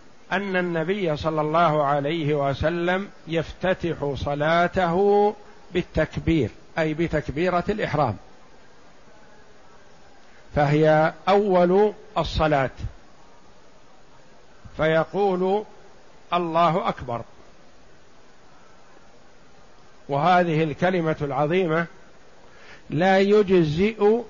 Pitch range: 150-185 Hz